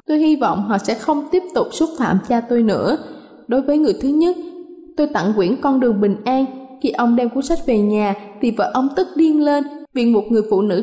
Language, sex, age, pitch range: Thai, female, 20-39, 220-290 Hz